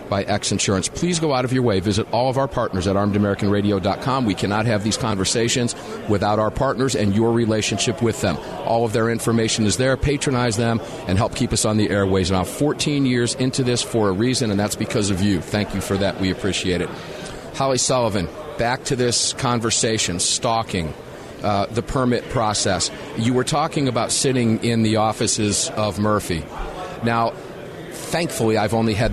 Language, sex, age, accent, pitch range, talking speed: English, male, 50-69, American, 105-135 Hz, 185 wpm